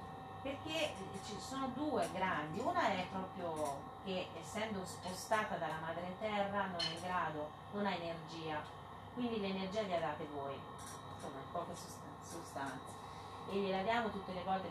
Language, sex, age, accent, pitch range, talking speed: Italian, female, 30-49, native, 155-215 Hz, 155 wpm